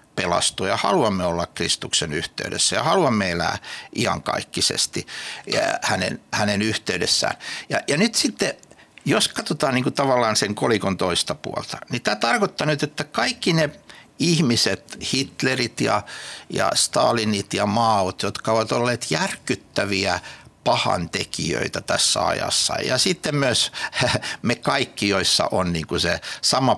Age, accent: 60-79, native